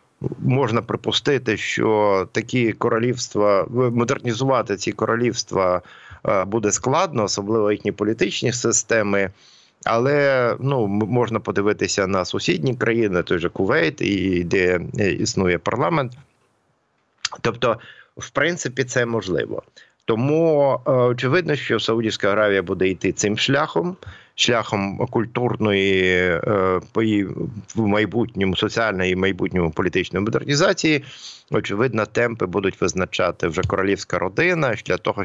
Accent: native